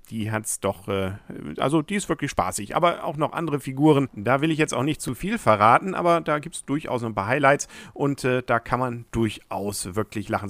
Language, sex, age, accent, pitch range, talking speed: German, male, 50-69, German, 105-145 Hz, 215 wpm